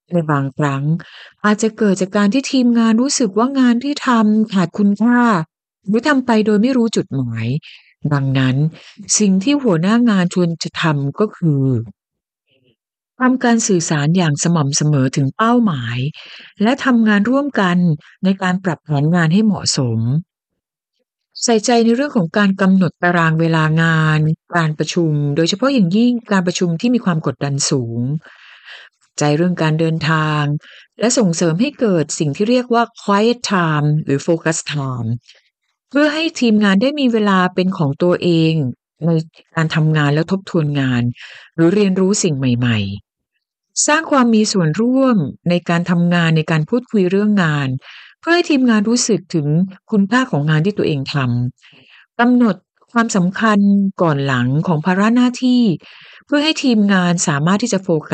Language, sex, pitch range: Thai, female, 155-225 Hz